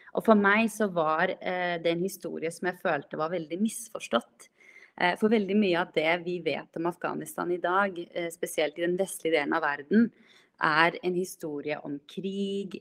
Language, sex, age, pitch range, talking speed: English, female, 30-49, 165-210 Hz, 170 wpm